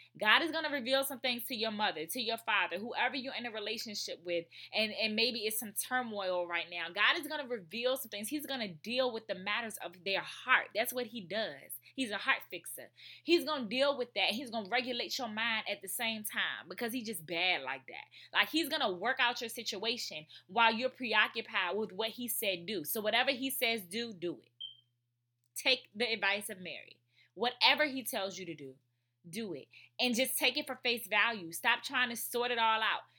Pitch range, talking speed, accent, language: 190-260 Hz, 225 wpm, American, English